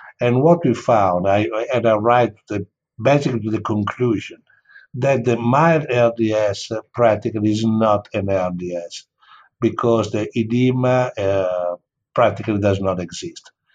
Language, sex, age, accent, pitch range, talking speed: English, male, 60-79, Italian, 100-130 Hz, 125 wpm